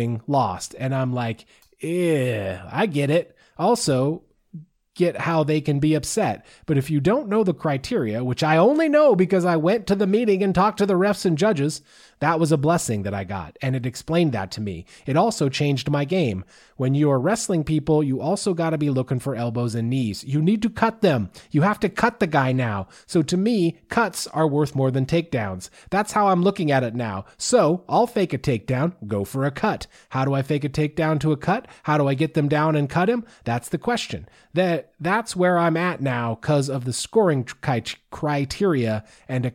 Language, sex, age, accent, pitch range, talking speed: English, male, 30-49, American, 130-180 Hz, 215 wpm